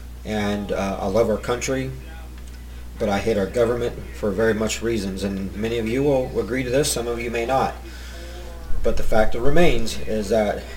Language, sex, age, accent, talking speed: English, male, 40-59, American, 195 wpm